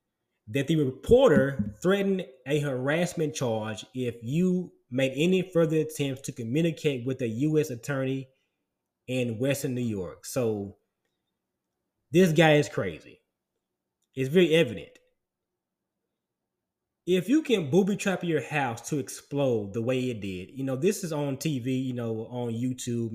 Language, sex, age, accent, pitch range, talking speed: English, male, 20-39, American, 120-170 Hz, 140 wpm